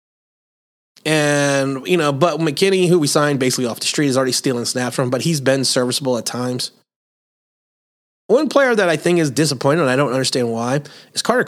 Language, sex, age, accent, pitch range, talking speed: English, male, 30-49, American, 125-175 Hz, 200 wpm